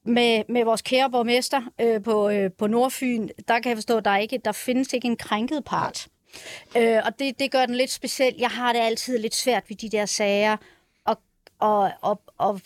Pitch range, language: 210-250 Hz, Danish